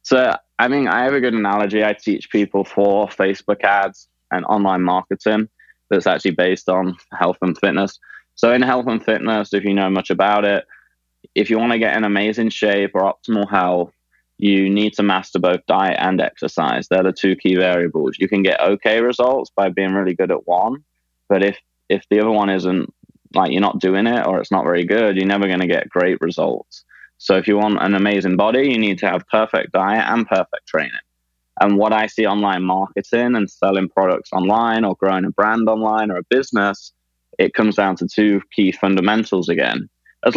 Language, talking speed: English, 205 wpm